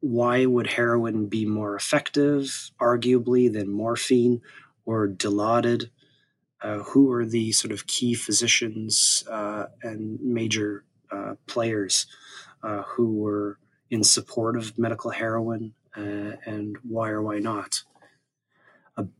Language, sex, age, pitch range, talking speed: English, male, 20-39, 110-125 Hz, 120 wpm